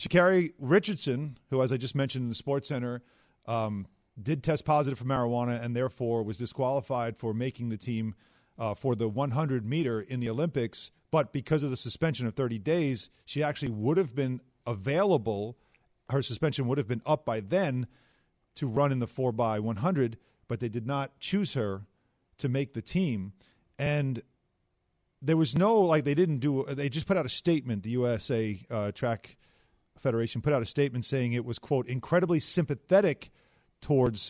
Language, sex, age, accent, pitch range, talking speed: English, male, 40-59, American, 120-155 Hz, 175 wpm